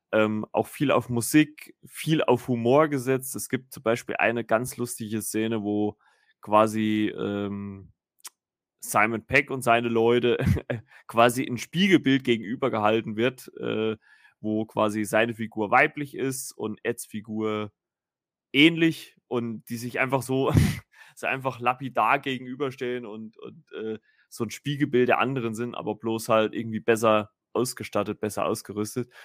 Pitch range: 110-125 Hz